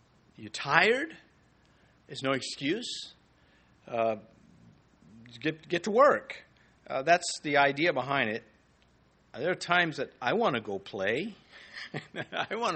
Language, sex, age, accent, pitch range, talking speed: English, male, 50-69, American, 120-165 Hz, 125 wpm